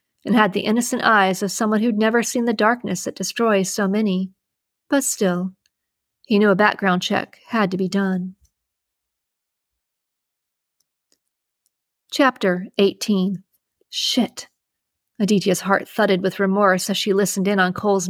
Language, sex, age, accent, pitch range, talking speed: English, female, 50-69, American, 185-220 Hz, 135 wpm